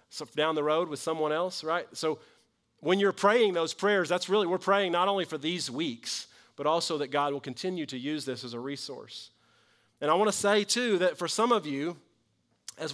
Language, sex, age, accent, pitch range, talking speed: English, male, 30-49, American, 135-170 Hz, 220 wpm